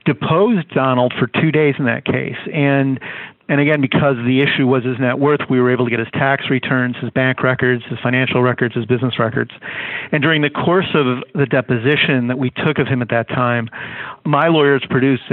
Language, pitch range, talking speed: English, 125-140 Hz, 210 wpm